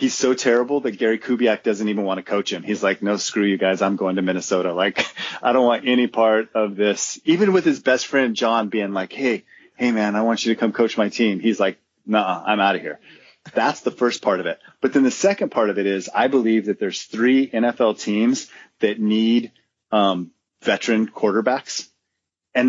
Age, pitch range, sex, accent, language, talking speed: 30-49, 100-120 Hz, male, American, English, 220 wpm